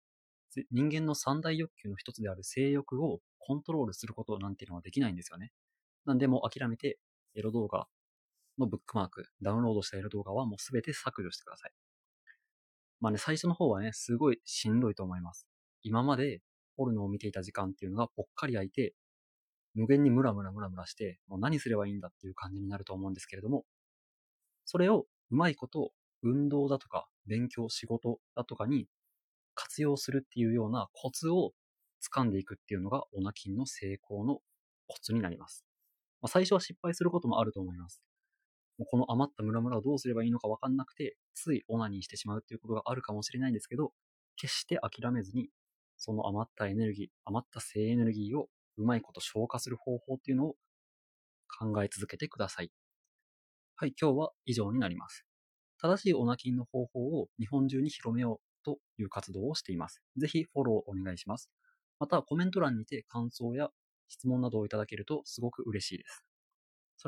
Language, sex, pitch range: Japanese, male, 105-135 Hz